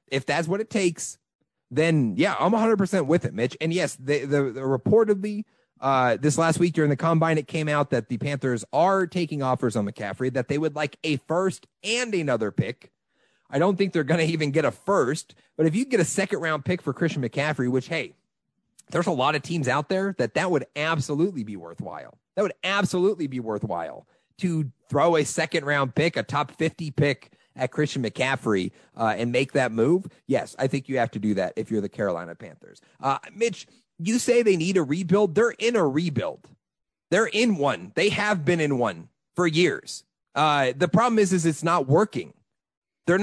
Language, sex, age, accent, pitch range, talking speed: English, male, 30-49, American, 135-190 Hz, 200 wpm